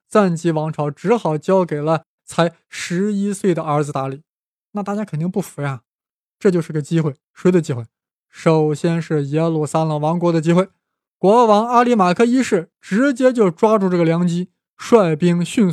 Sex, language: male, Chinese